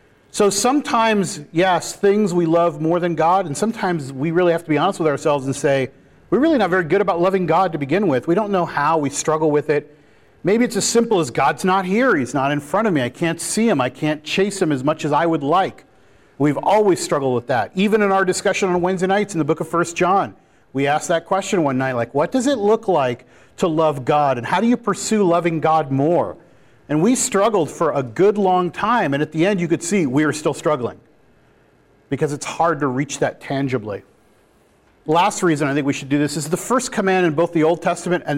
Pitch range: 150-190 Hz